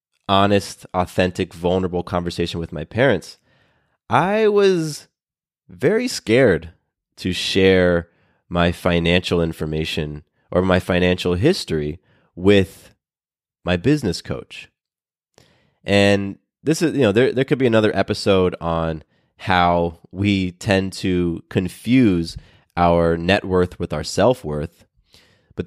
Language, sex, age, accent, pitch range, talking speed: English, male, 20-39, American, 85-110 Hz, 115 wpm